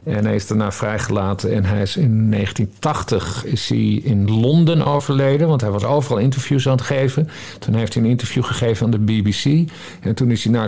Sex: male